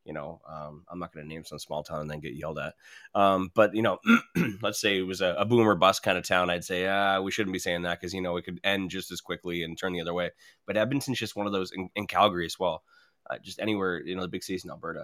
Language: English